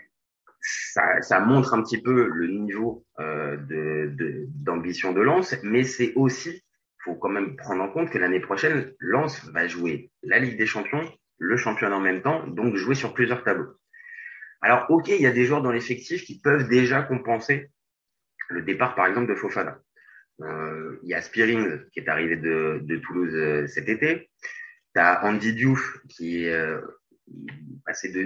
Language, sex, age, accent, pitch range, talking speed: French, male, 30-49, French, 85-135 Hz, 180 wpm